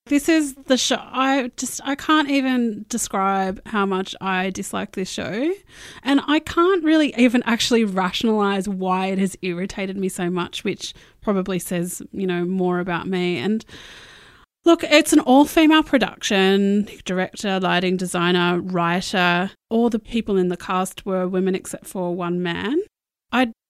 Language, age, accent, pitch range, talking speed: English, 30-49, Australian, 185-235 Hz, 155 wpm